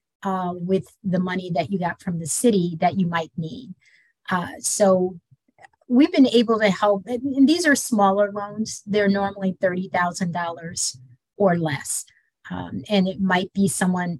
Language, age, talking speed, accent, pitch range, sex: English, 30-49, 155 wpm, American, 180-210 Hz, female